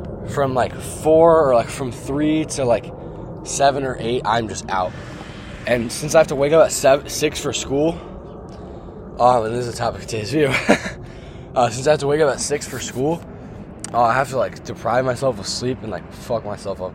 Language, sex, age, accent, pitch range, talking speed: English, male, 20-39, American, 100-130 Hz, 215 wpm